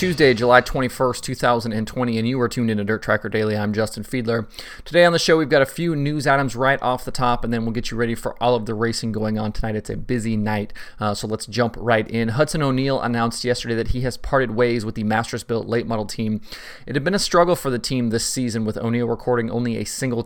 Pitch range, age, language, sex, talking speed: 110-125 Hz, 30-49, English, male, 250 wpm